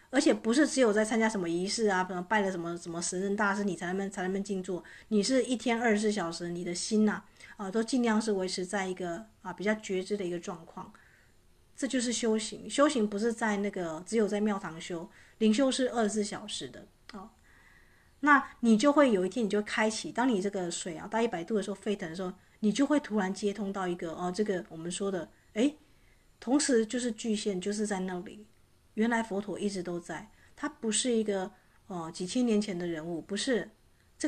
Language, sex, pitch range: Chinese, female, 185-225 Hz